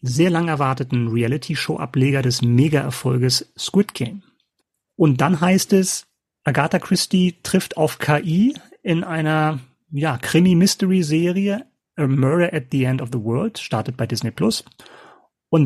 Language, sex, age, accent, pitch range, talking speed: German, male, 30-49, German, 125-155 Hz, 130 wpm